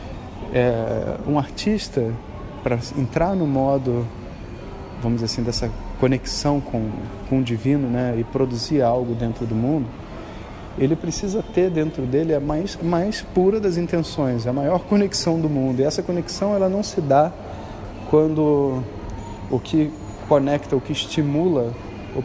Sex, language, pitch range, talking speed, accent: male, Portuguese, 110-145 Hz, 145 wpm, Brazilian